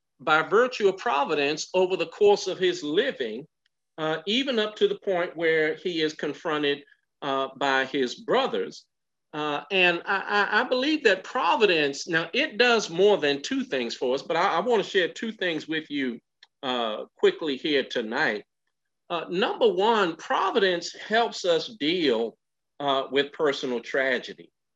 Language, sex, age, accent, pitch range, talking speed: English, male, 50-69, American, 150-245 Hz, 155 wpm